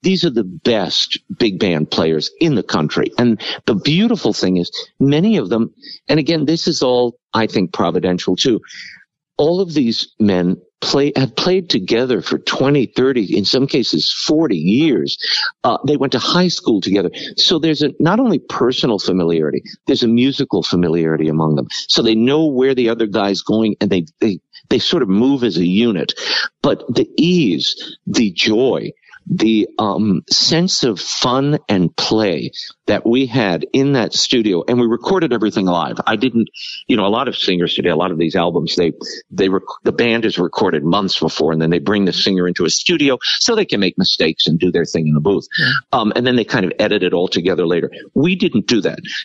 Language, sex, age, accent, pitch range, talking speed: English, male, 50-69, American, 95-145 Hz, 200 wpm